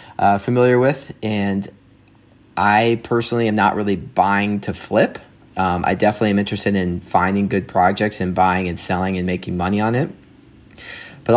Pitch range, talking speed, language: 95-110 Hz, 165 wpm, English